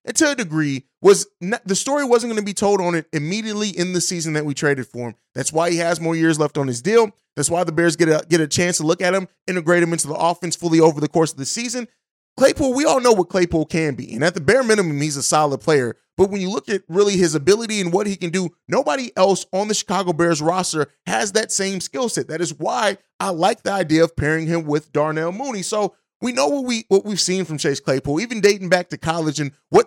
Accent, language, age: American, English, 30-49